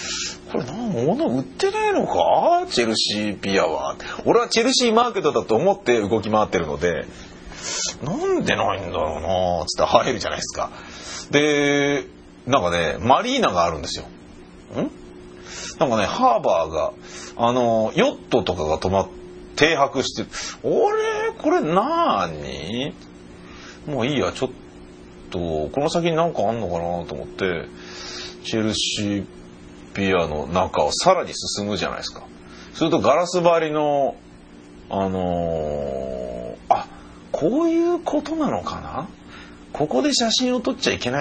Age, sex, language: 40-59, male, Japanese